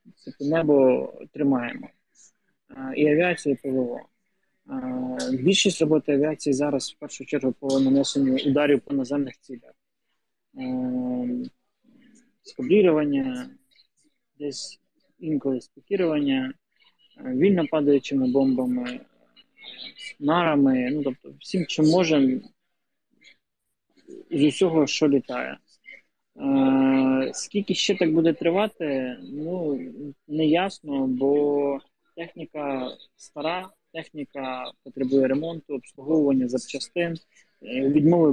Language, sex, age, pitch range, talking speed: Ukrainian, male, 20-39, 135-180 Hz, 85 wpm